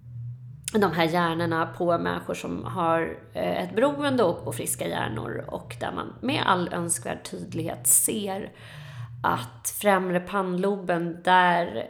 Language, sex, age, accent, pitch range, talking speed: Swedish, female, 30-49, native, 170-230 Hz, 125 wpm